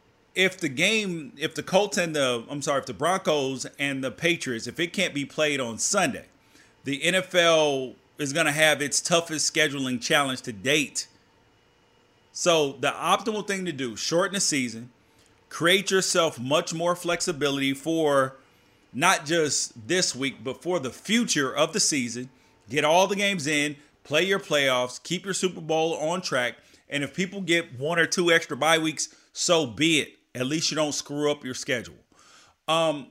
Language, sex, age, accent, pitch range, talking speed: English, male, 30-49, American, 135-175 Hz, 175 wpm